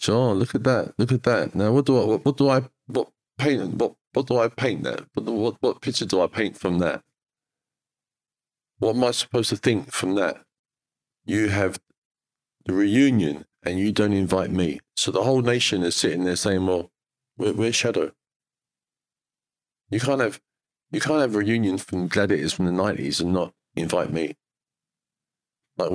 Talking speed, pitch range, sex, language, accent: 185 wpm, 85-115 Hz, male, English, British